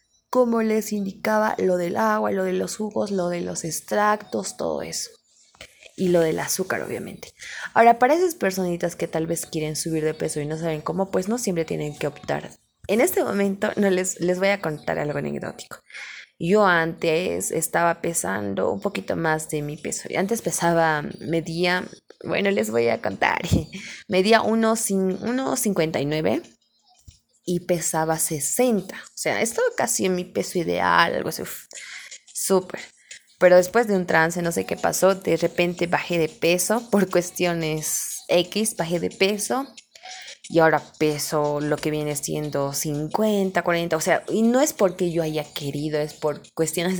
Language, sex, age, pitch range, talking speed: Spanish, female, 20-39, 160-200 Hz, 165 wpm